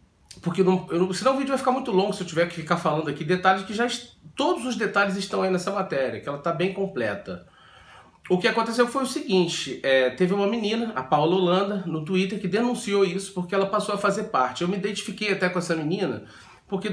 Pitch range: 125-185 Hz